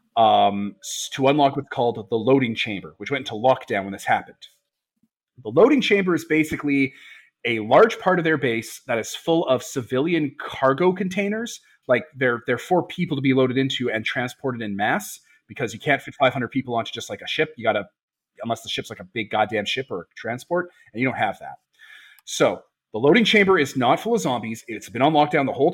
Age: 30-49